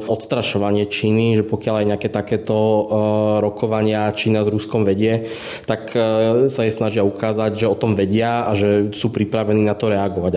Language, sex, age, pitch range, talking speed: Slovak, male, 20-39, 105-115 Hz, 160 wpm